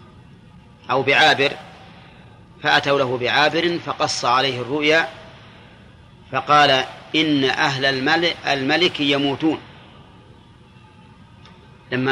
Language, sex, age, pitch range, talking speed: Arabic, male, 30-49, 125-150 Hz, 70 wpm